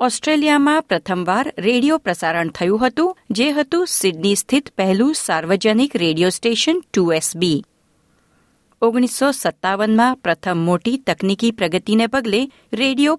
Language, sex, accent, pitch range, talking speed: Gujarati, female, native, 180-260 Hz, 105 wpm